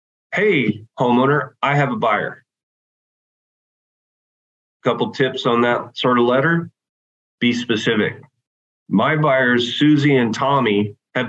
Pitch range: 105-130 Hz